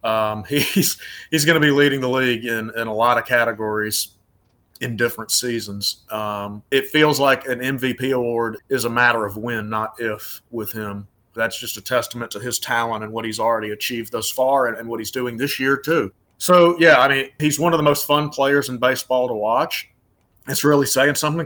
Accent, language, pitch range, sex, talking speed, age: American, English, 110-135 Hz, male, 210 wpm, 30-49